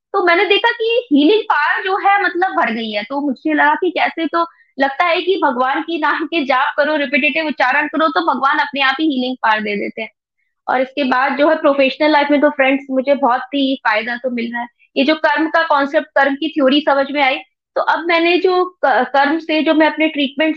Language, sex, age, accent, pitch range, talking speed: Hindi, female, 20-39, native, 265-315 Hz, 230 wpm